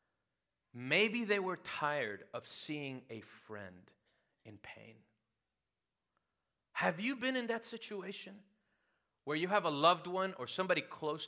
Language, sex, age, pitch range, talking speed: English, male, 40-59, 160-240 Hz, 135 wpm